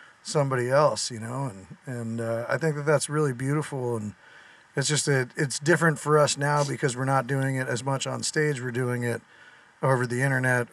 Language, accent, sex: English, American, male